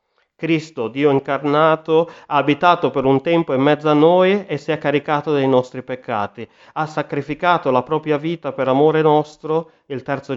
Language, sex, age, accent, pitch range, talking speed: Italian, male, 30-49, native, 120-150 Hz, 170 wpm